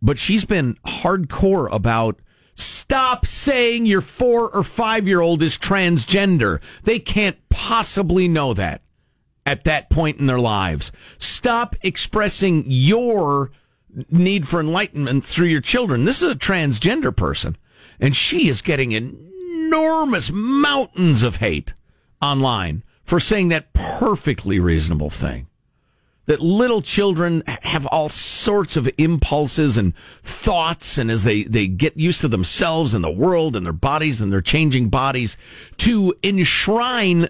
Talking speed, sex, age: 135 wpm, male, 50-69